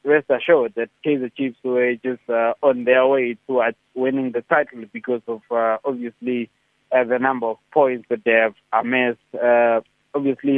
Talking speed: 170 wpm